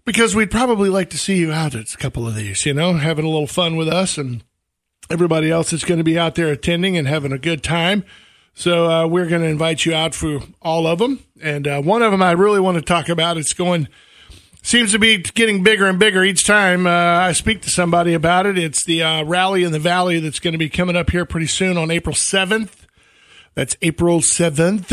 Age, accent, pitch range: 50-69, American, 160-185 Hz